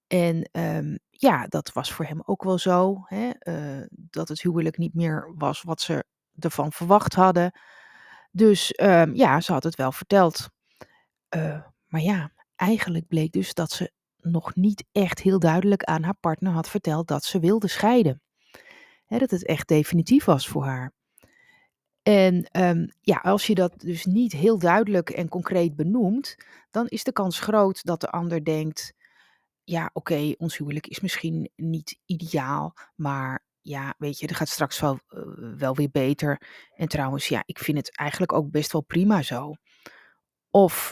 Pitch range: 155-190 Hz